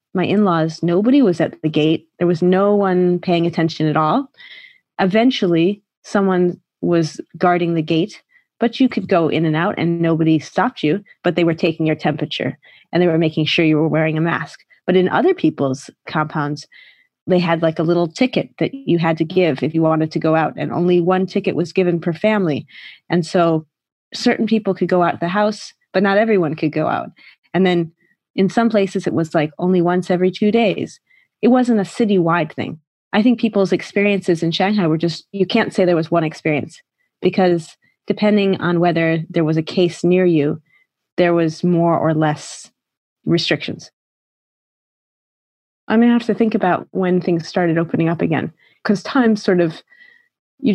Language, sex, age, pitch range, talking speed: English, female, 30-49, 165-205 Hz, 190 wpm